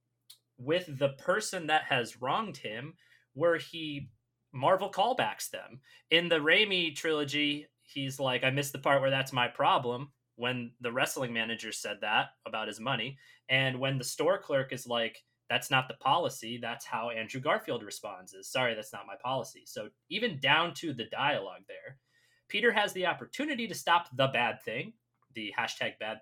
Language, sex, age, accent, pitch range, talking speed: English, male, 30-49, American, 120-155 Hz, 175 wpm